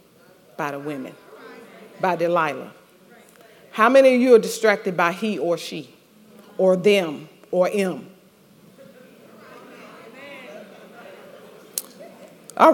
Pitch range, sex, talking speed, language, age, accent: 220-315 Hz, female, 95 wpm, English, 40-59, American